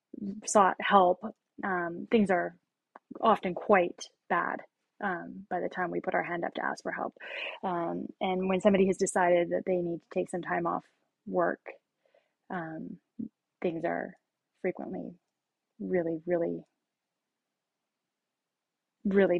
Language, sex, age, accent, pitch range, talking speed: English, female, 20-39, American, 180-220 Hz, 135 wpm